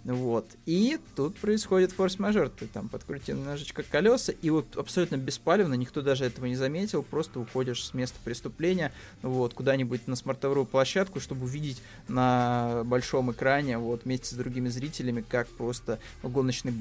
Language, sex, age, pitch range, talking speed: Russian, male, 20-39, 120-145 Hz, 150 wpm